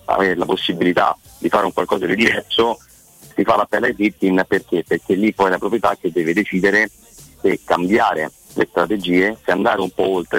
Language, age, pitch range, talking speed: Italian, 30-49, 90-100 Hz, 195 wpm